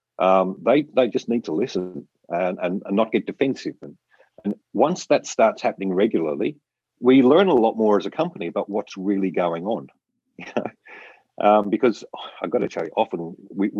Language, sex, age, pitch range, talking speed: English, male, 50-69, 95-115 Hz, 190 wpm